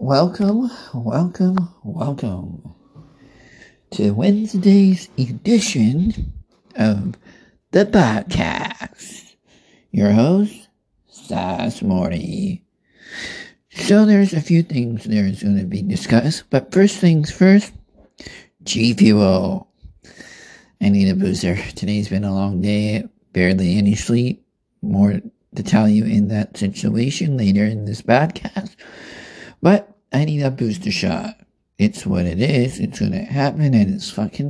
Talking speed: 120 wpm